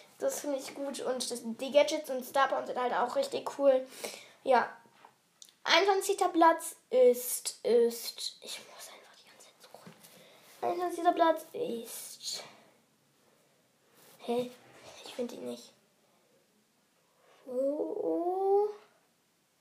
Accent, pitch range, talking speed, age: German, 260-335 Hz, 115 wpm, 10-29